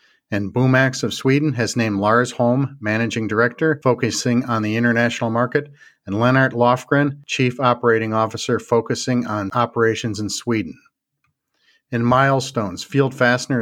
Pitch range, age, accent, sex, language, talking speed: 115-130 Hz, 50-69, American, male, English, 130 wpm